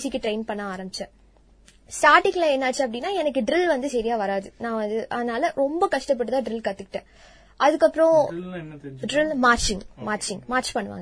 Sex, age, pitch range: female, 20-39, 215-280 Hz